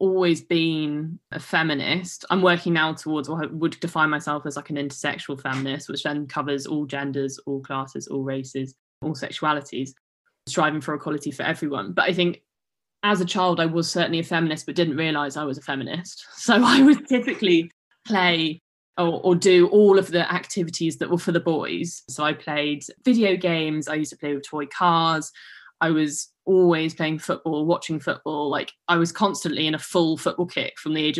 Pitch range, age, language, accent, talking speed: 155-180 Hz, 20-39, English, British, 190 wpm